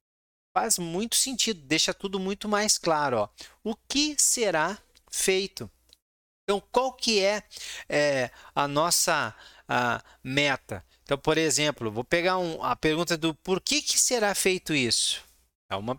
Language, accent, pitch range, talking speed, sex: Portuguese, Brazilian, 125-195 Hz, 145 wpm, male